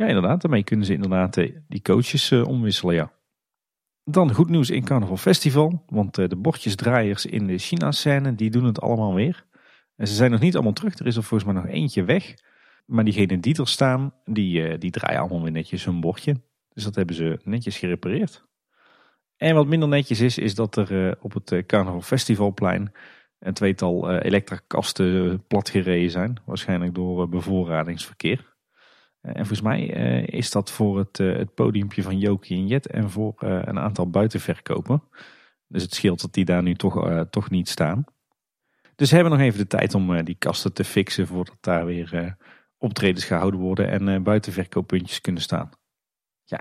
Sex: male